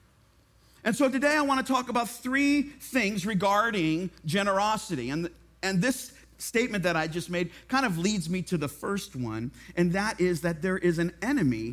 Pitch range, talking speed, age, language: 155-225 Hz, 180 wpm, 50-69, English